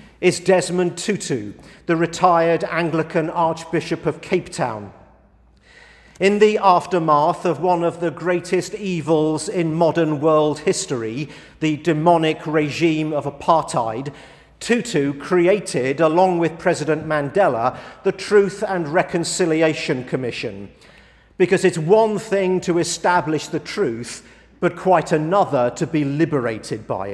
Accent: British